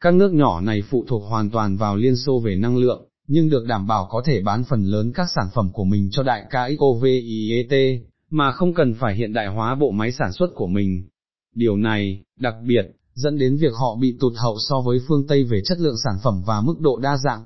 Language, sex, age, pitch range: Vietnamese, male, 20-39, 110-140 Hz